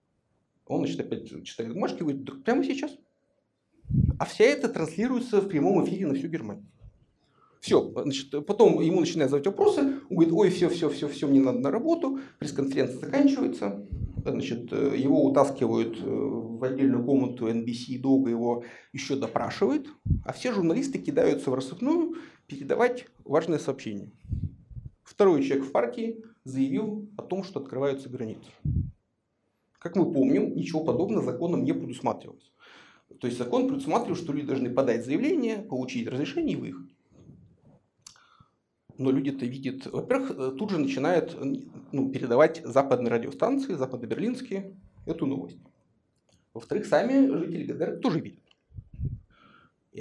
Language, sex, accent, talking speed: Russian, male, native, 135 wpm